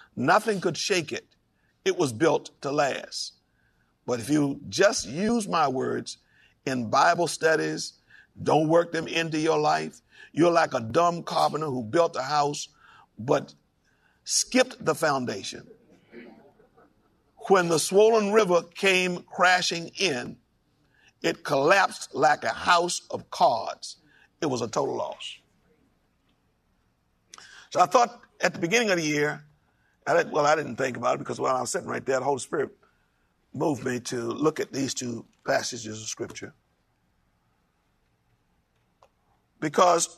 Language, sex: English, male